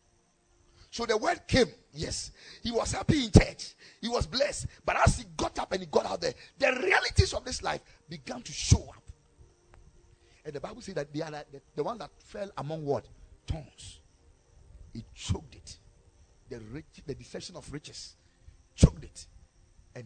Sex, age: male, 40-59